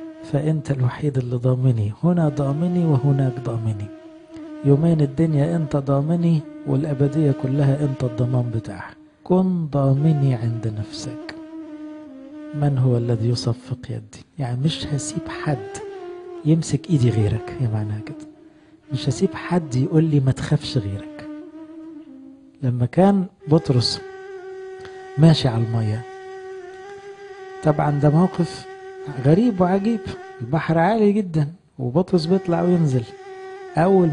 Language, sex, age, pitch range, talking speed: English, male, 50-69, 130-195 Hz, 105 wpm